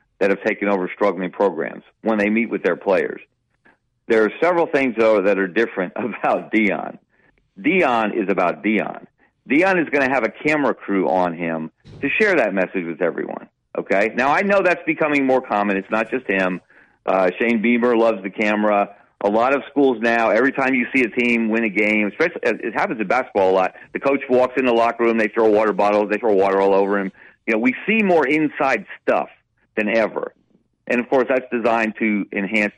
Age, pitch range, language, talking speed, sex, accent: 40-59, 100-125 Hz, English, 210 wpm, male, American